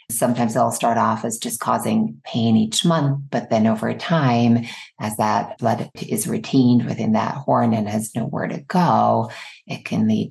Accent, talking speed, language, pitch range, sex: American, 175 wpm, English, 120-160 Hz, female